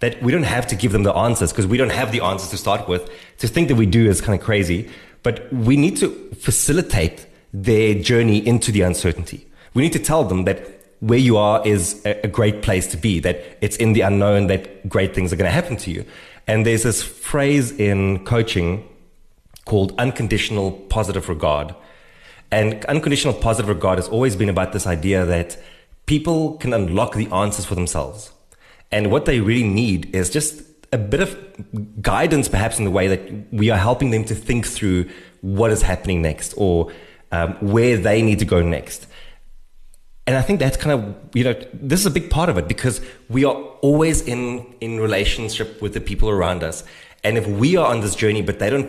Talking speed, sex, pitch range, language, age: 205 wpm, male, 95-120 Hz, English, 20-39